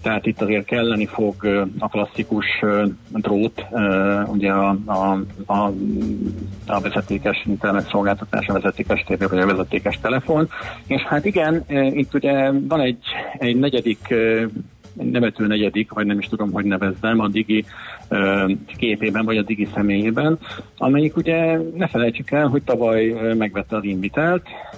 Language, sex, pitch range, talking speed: Hungarian, male, 100-115 Hz, 135 wpm